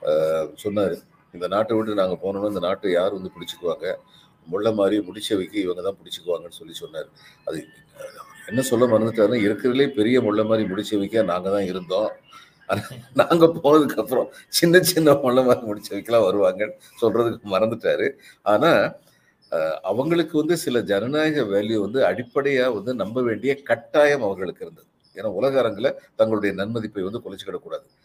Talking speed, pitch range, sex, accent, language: 140 wpm, 110-175 Hz, male, native, Tamil